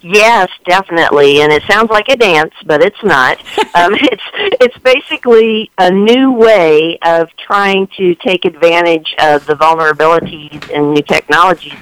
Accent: American